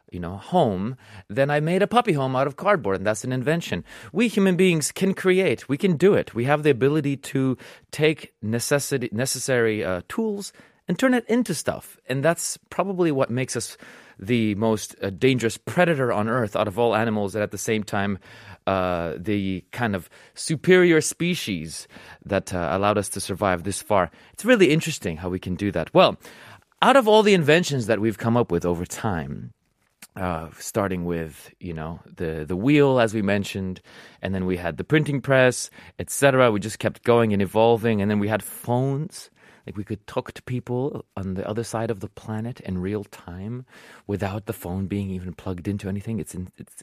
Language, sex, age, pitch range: Korean, male, 30-49, 100-150 Hz